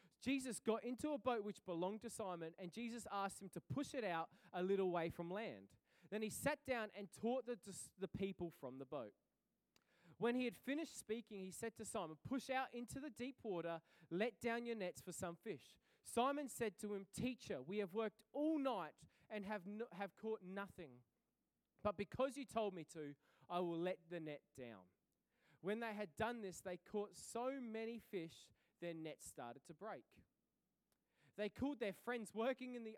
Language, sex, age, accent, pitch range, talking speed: English, male, 20-39, Australian, 165-230 Hz, 195 wpm